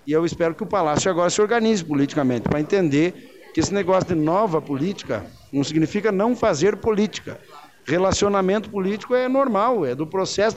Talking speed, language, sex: 170 wpm, Portuguese, male